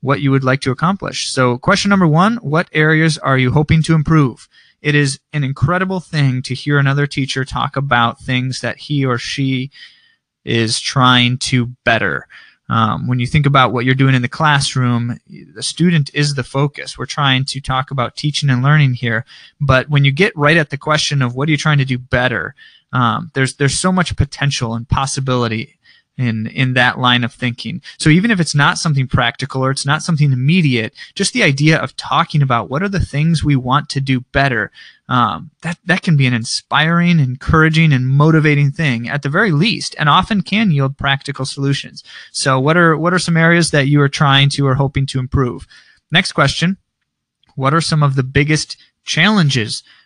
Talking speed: 200 wpm